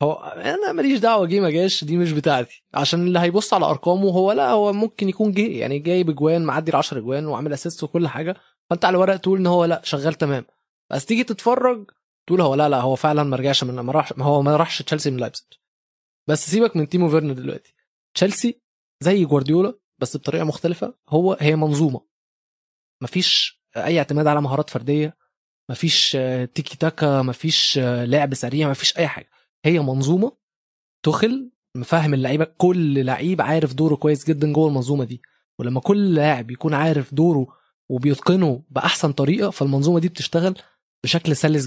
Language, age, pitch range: Arabic, 20-39, 140-180 Hz